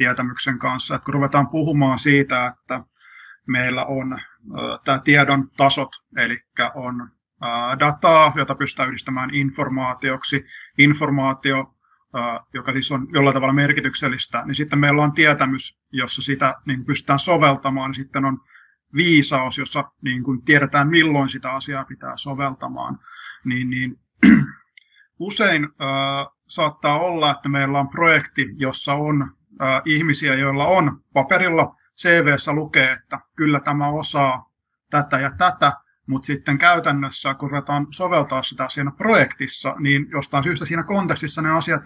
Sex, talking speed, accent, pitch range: male, 120 wpm, native, 135-150 Hz